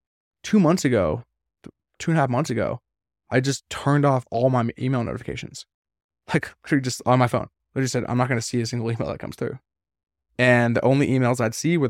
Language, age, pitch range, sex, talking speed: English, 20-39, 115-135 Hz, male, 215 wpm